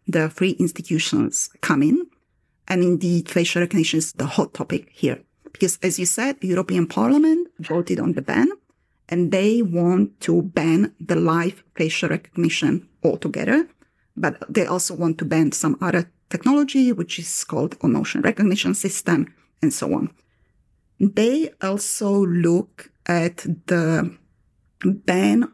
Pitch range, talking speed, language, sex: 175-225 Hz, 140 wpm, English, female